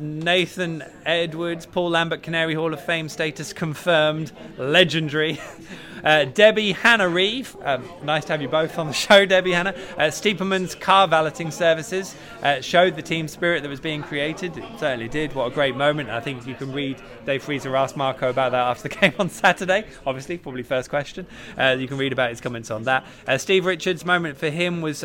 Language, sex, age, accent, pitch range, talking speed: English, male, 20-39, British, 130-165 Hz, 195 wpm